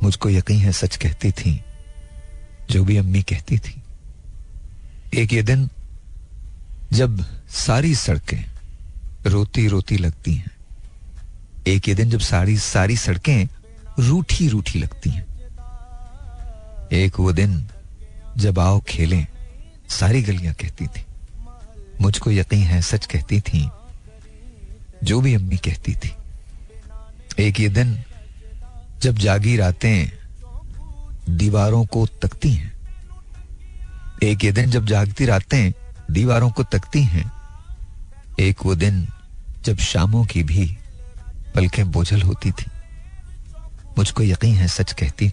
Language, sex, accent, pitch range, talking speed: Hindi, male, native, 80-105 Hz, 120 wpm